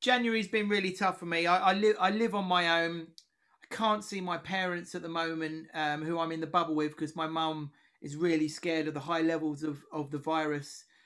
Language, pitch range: English, 160-190 Hz